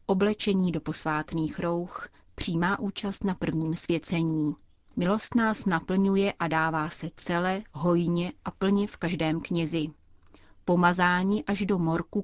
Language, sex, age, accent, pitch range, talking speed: Czech, female, 30-49, native, 165-195 Hz, 125 wpm